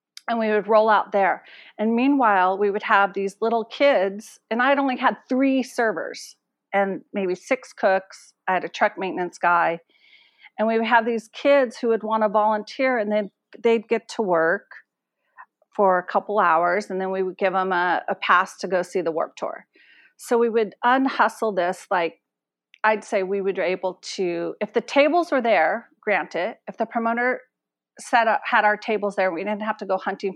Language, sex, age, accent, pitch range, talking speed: English, female, 40-59, American, 185-230 Hz, 200 wpm